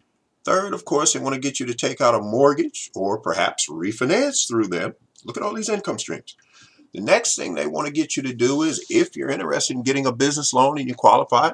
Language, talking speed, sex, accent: English, 240 wpm, male, American